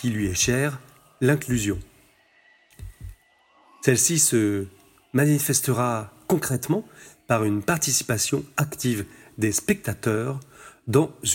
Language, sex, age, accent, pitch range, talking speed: French, male, 40-59, French, 105-145 Hz, 80 wpm